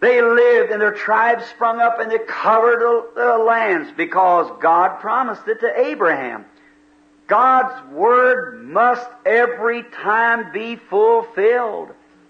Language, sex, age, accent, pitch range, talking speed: English, male, 50-69, American, 200-250 Hz, 125 wpm